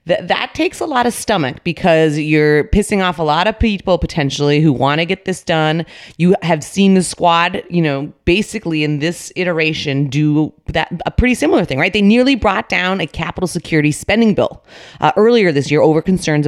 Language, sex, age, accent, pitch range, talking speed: English, female, 30-49, American, 145-180 Hz, 200 wpm